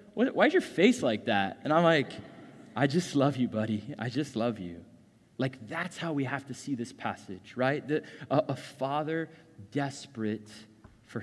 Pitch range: 120-165 Hz